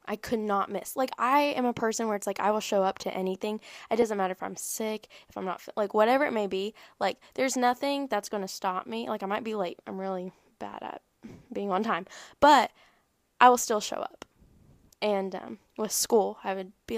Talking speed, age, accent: 230 wpm, 10-29, American